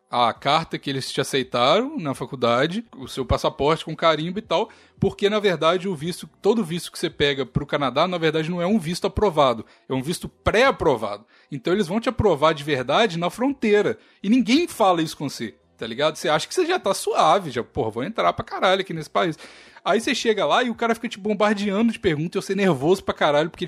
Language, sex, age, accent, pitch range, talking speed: Portuguese, male, 20-39, Brazilian, 155-215 Hz, 230 wpm